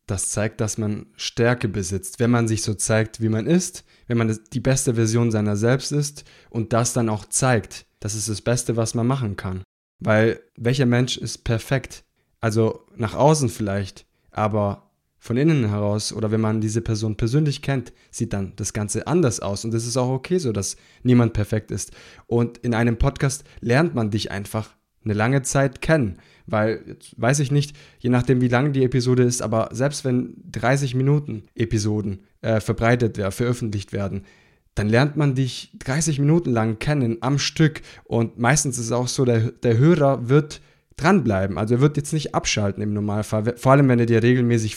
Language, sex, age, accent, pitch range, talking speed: German, male, 20-39, German, 110-135 Hz, 190 wpm